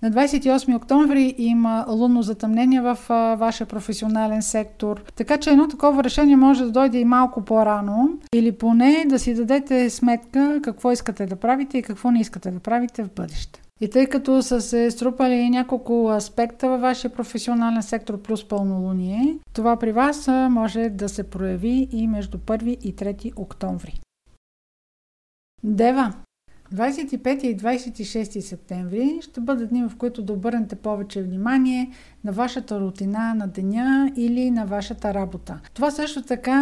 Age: 50-69